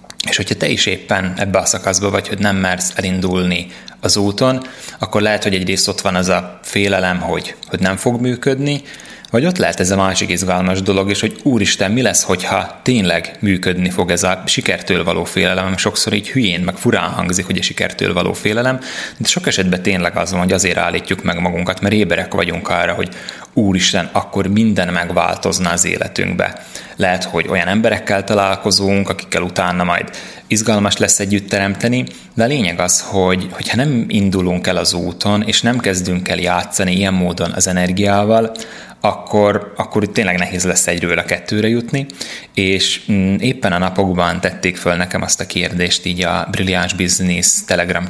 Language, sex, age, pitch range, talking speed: Hungarian, male, 20-39, 90-100 Hz, 175 wpm